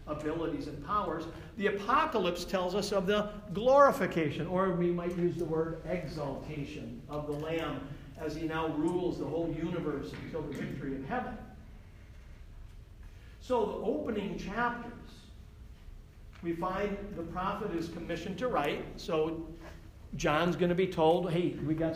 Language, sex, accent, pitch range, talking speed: English, male, American, 150-185 Hz, 145 wpm